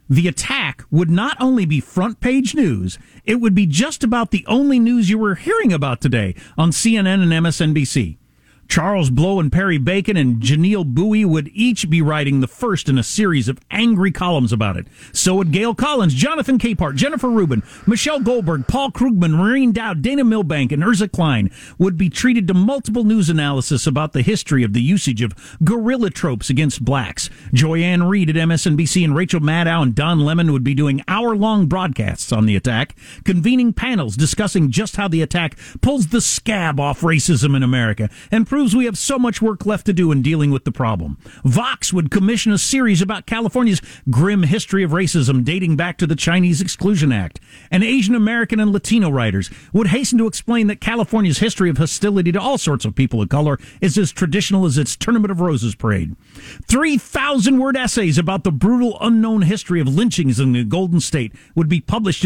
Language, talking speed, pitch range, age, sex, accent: English, 190 wpm, 140-210 Hz, 50-69, male, American